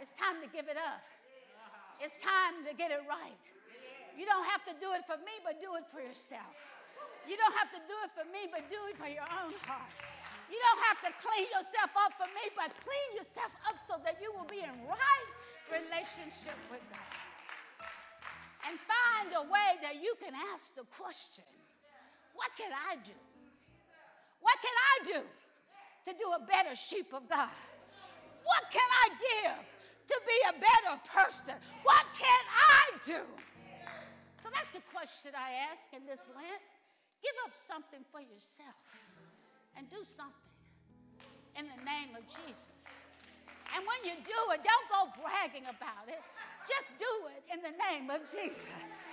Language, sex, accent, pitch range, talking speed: English, female, American, 295-415 Hz, 170 wpm